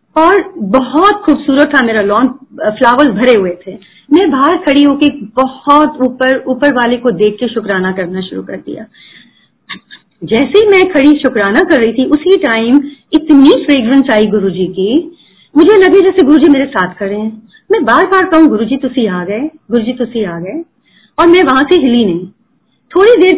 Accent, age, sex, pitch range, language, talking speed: native, 30-49, female, 220-320 Hz, Hindi, 175 wpm